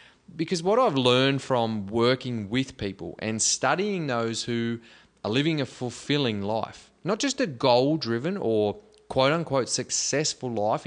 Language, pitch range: English, 115-150 Hz